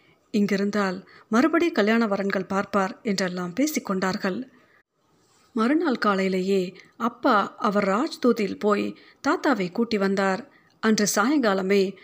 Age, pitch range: 50-69, 195-255 Hz